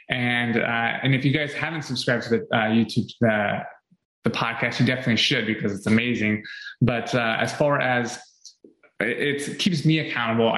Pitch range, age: 115-135 Hz, 20-39